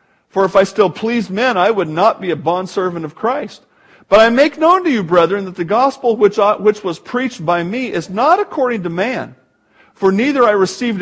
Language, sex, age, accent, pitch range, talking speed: English, male, 50-69, American, 165-230 Hz, 205 wpm